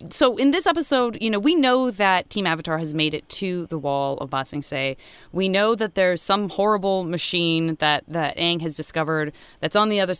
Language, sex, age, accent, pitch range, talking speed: English, female, 20-39, American, 160-215 Hz, 220 wpm